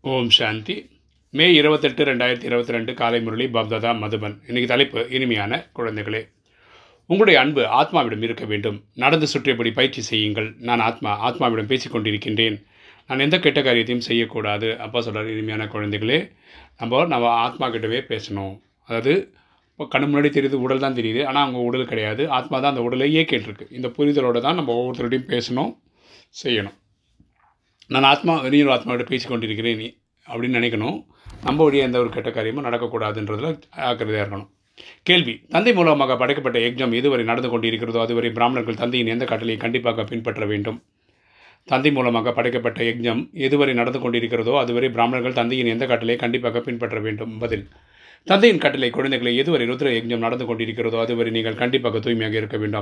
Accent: native